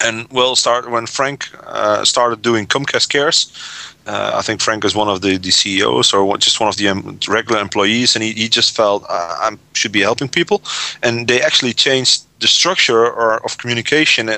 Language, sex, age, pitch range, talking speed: English, male, 30-49, 105-140 Hz, 190 wpm